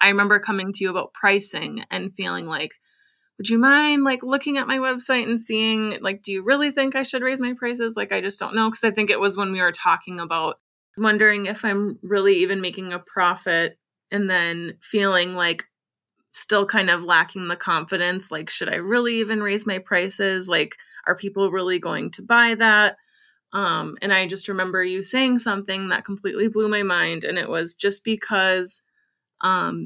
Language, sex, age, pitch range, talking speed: English, female, 20-39, 185-230 Hz, 195 wpm